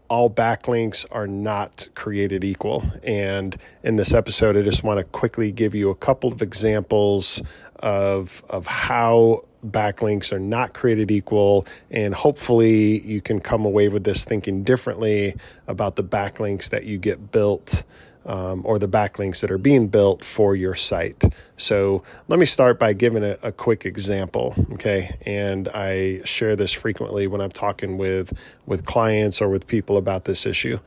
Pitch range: 100-115 Hz